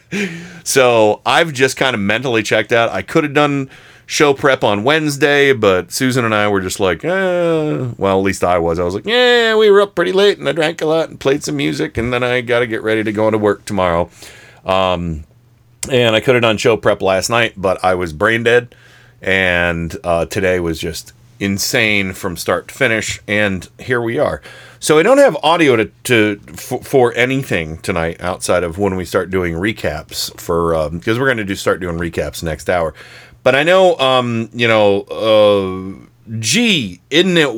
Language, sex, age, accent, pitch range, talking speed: English, male, 40-59, American, 100-130 Hz, 200 wpm